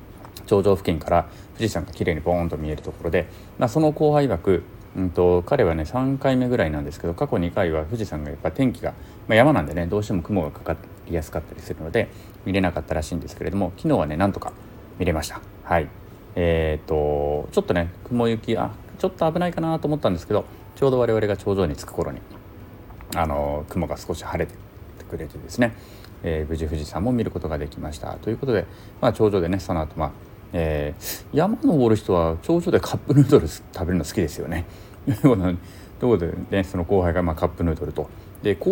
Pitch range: 85-110 Hz